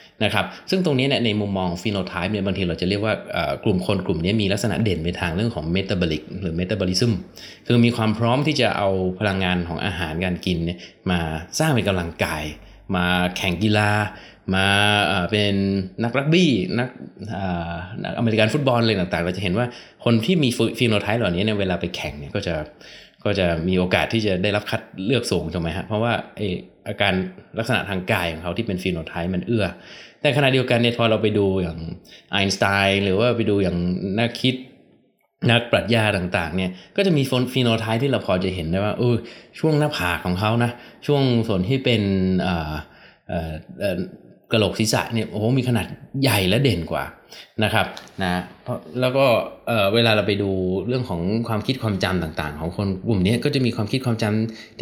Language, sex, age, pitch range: Thai, male, 20-39, 90-120 Hz